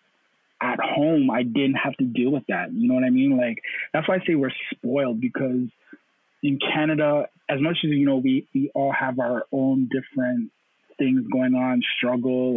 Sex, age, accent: male, 20-39, American